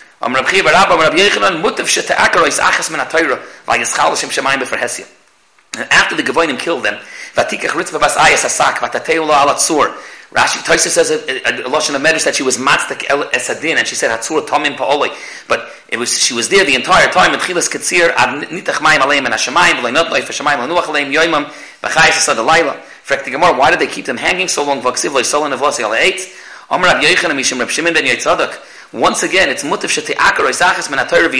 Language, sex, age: English, male, 40-59